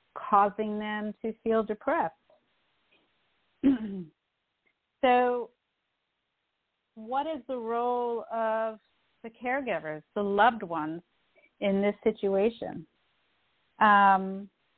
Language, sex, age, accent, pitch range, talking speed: English, female, 40-59, American, 185-220 Hz, 80 wpm